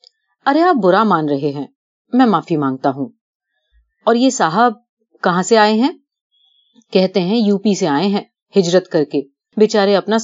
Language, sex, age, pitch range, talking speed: Urdu, female, 30-49, 165-240 Hz, 160 wpm